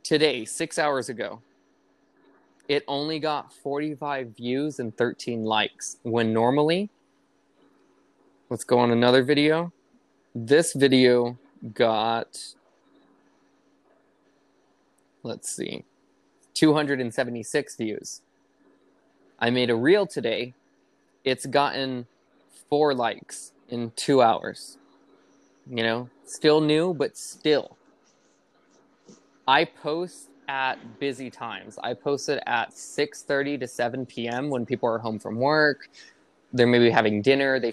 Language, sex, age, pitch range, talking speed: English, male, 20-39, 120-145 Hz, 105 wpm